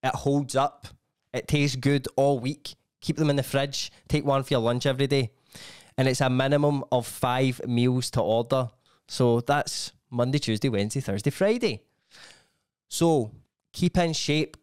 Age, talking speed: 20-39, 165 wpm